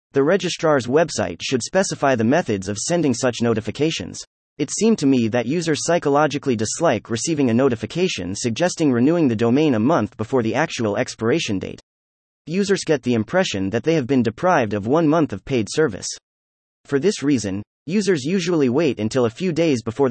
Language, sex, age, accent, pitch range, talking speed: English, male, 30-49, American, 105-160 Hz, 175 wpm